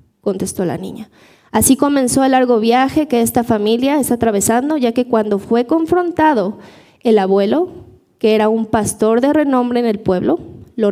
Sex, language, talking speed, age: female, English, 165 wpm, 20-39